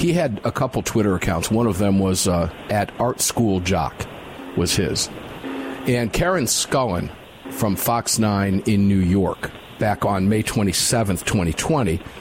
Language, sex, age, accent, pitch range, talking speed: English, male, 50-69, American, 100-135 Hz, 150 wpm